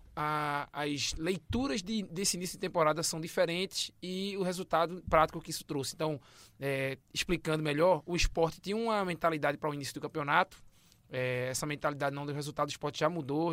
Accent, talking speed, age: Brazilian, 180 wpm, 20-39